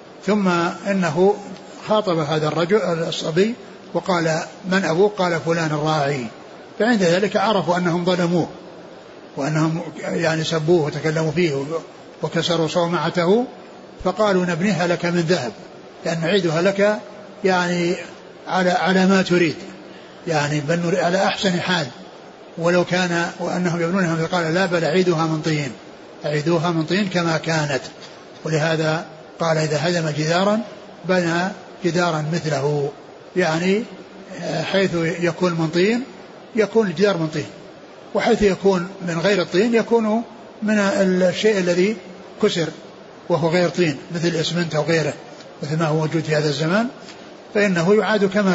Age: 60-79